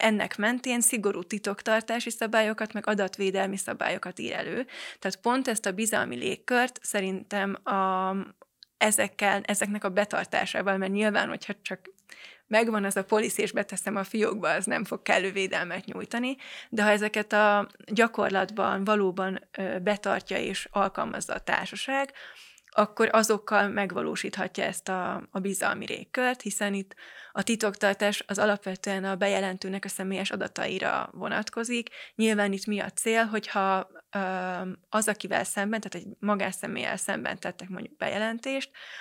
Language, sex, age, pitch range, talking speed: Hungarian, female, 20-39, 195-220 Hz, 130 wpm